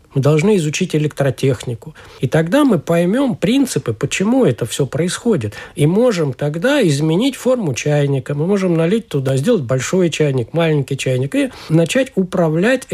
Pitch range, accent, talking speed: 140-195 Hz, native, 145 wpm